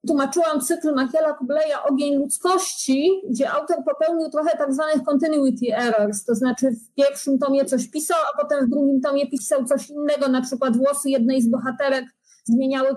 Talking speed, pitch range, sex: 165 wpm, 255-295 Hz, female